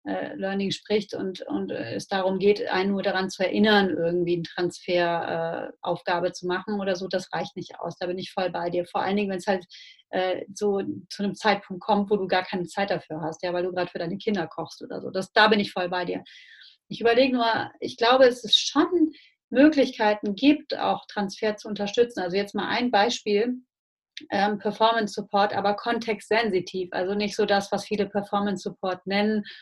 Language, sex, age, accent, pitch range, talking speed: German, female, 30-49, German, 185-210 Hz, 195 wpm